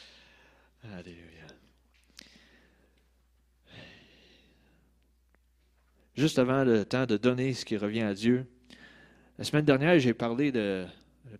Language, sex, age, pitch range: French, male, 40-59, 90-130 Hz